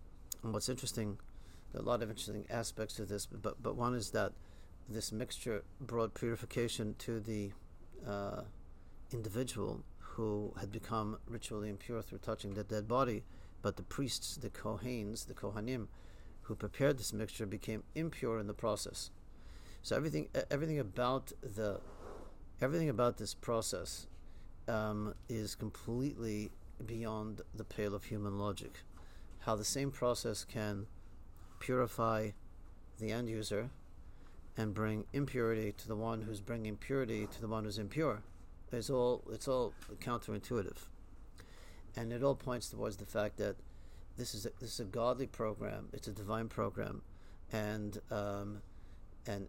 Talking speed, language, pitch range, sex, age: 145 wpm, English, 95-115 Hz, male, 50-69